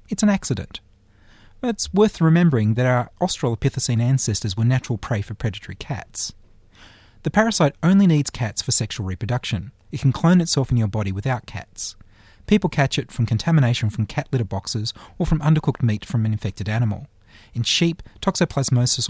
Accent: Australian